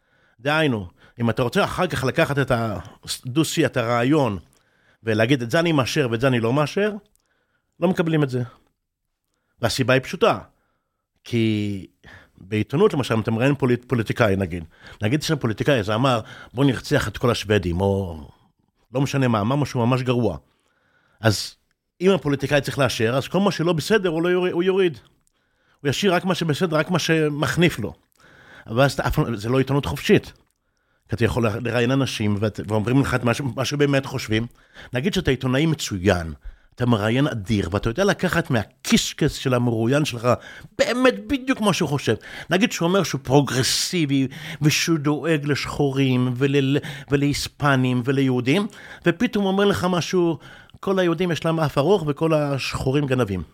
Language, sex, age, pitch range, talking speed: Hebrew, male, 50-69, 115-160 Hz, 155 wpm